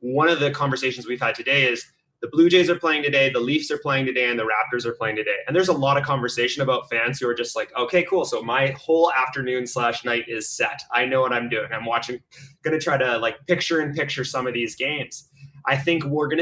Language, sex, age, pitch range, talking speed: English, male, 20-39, 115-140 Hz, 255 wpm